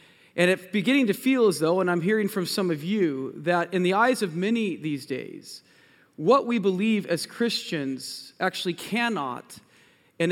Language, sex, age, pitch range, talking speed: English, male, 40-59, 155-205 Hz, 175 wpm